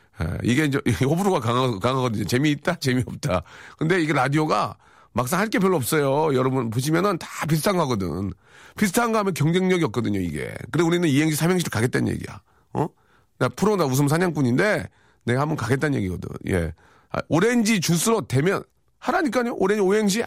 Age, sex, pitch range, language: 40-59, male, 115-190 Hz, Korean